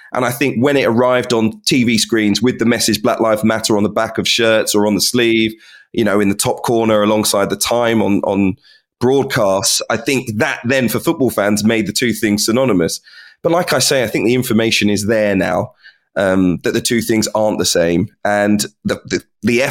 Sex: male